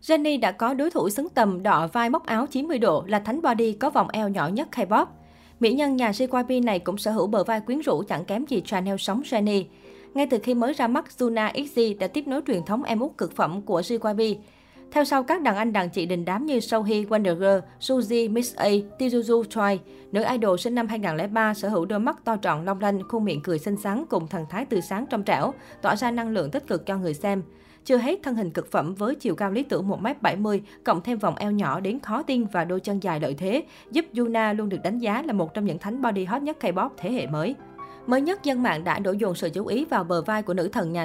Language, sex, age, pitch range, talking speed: Vietnamese, female, 20-39, 190-245 Hz, 250 wpm